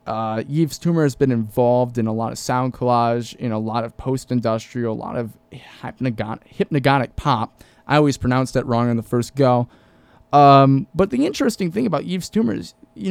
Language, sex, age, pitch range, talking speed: English, male, 20-39, 115-140 Hz, 190 wpm